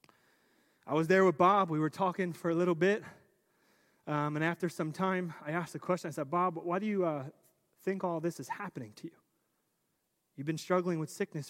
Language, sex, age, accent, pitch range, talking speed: English, male, 30-49, American, 160-200 Hz, 210 wpm